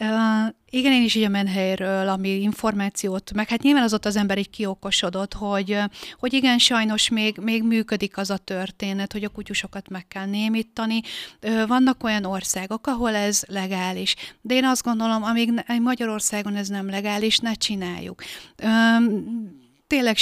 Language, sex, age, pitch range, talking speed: Hungarian, female, 30-49, 195-225 Hz, 160 wpm